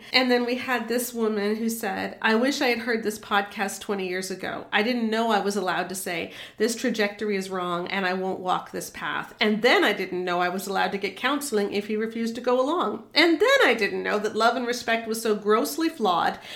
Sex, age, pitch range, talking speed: female, 40-59, 195-230 Hz, 240 wpm